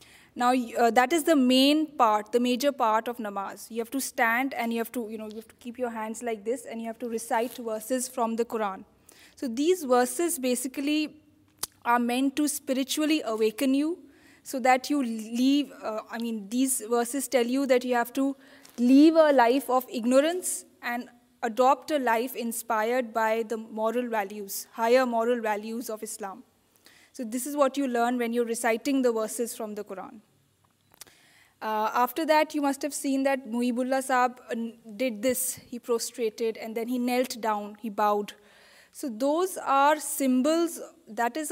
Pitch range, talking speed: 230-275 Hz, 180 wpm